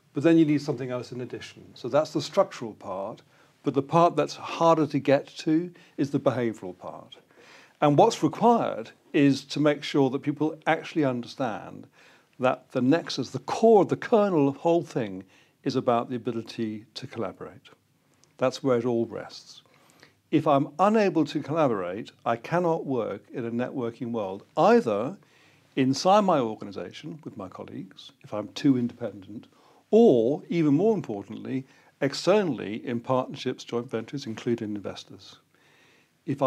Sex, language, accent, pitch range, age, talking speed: male, English, British, 120-155 Hz, 50-69, 155 wpm